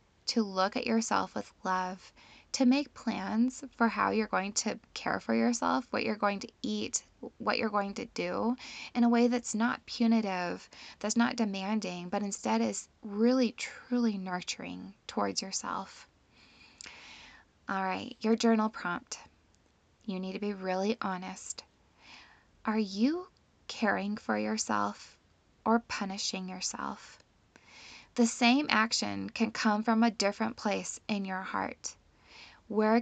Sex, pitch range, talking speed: female, 190-230 Hz, 140 wpm